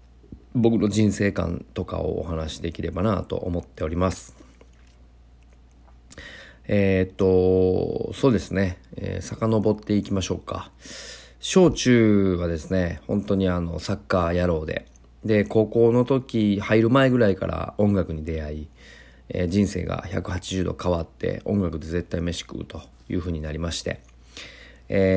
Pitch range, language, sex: 80-100 Hz, Japanese, male